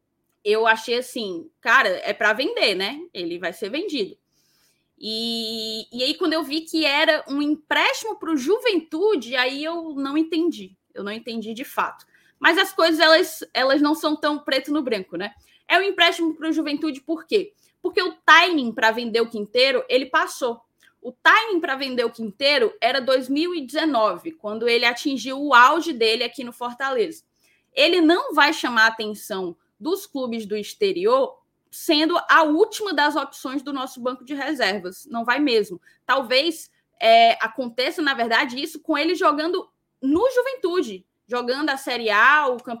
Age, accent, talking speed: 10-29, Brazilian, 165 wpm